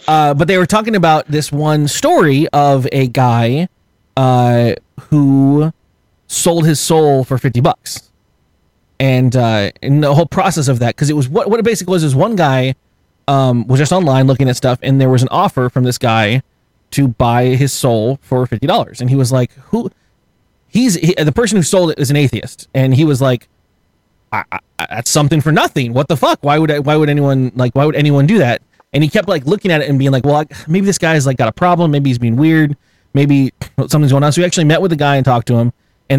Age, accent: 20-39, American